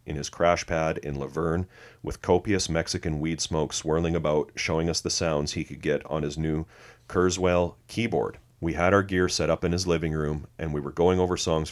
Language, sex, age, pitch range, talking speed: English, male, 40-59, 75-95 Hz, 215 wpm